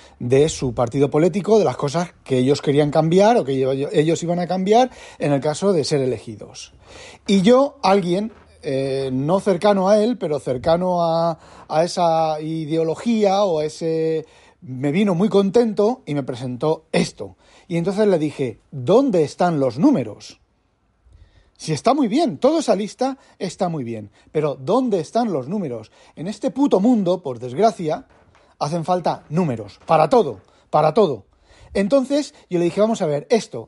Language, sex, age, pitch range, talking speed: Spanish, male, 40-59, 135-210 Hz, 165 wpm